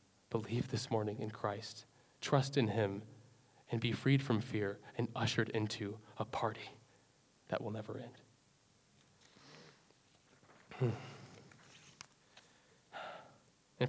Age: 20-39